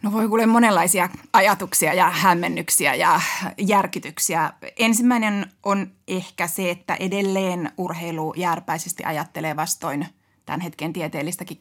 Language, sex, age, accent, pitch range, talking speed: Finnish, female, 20-39, native, 165-195 Hz, 115 wpm